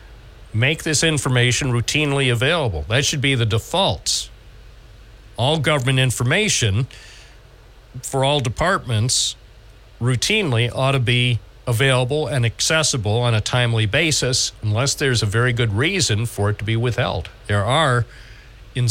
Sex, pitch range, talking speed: male, 110-140 Hz, 130 wpm